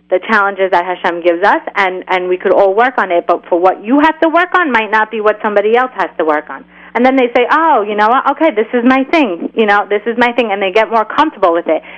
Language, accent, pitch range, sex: English, American, 185-245 Hz, female